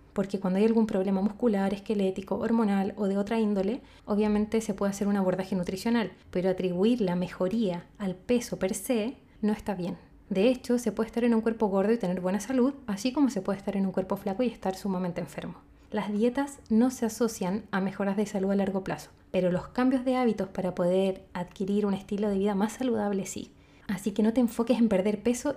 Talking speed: 215 wpm